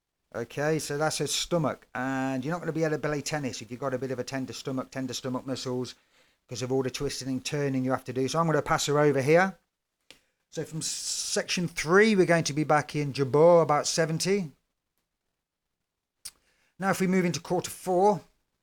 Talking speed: 215 wpm